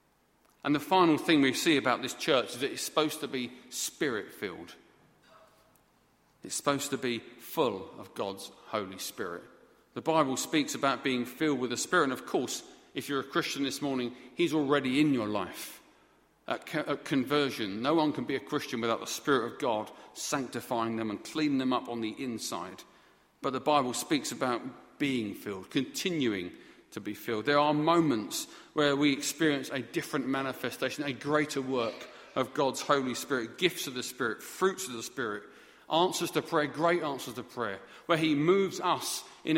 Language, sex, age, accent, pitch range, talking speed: English, male, 40-59, British, 125-155 Hz, 180 wpm